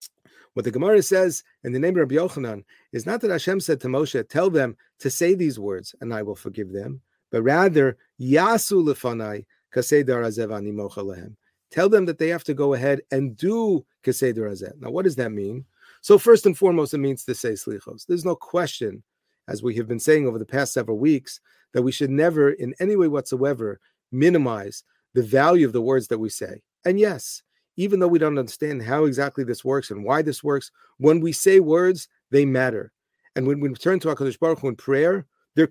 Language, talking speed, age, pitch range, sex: English, 200 wpm, 40-59, 125-165 Hz, male